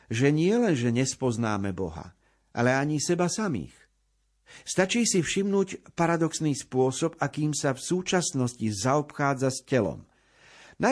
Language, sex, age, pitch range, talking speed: Slovak, male, 50-69, 105-150 Hz, 120 wpm